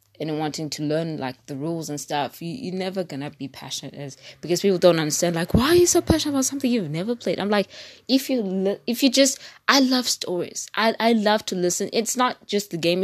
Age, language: 20-39, English